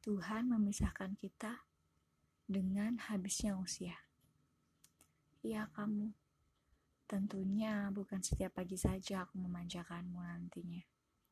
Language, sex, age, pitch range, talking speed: Indonesian, female, 20-39, 180-200 Hz, 85 wpm